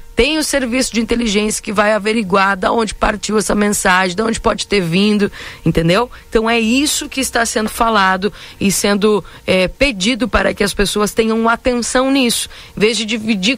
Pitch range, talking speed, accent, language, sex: 175-240 Hz, 180 wpm, Brazilian, Portuguese, female